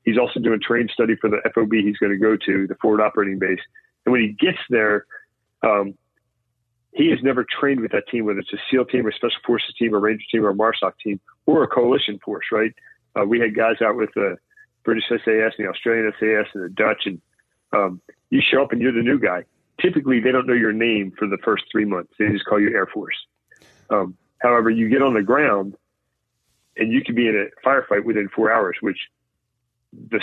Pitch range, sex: 105-125 Hz, male